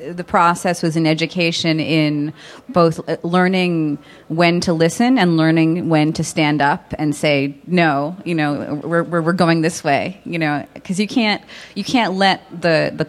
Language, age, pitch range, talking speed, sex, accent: English, 30-49, 155-185 Hz, 170 wpm, female, American